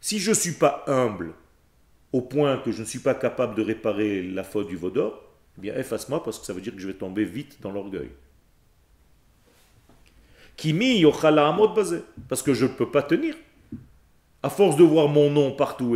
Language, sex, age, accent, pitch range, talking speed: French, male, 40-59, French, 95-160 Hz, 200 wpm